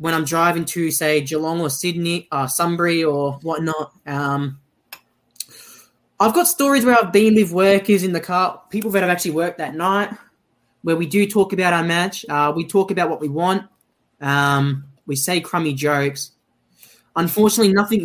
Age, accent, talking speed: 10-29, Australian, 175 wpm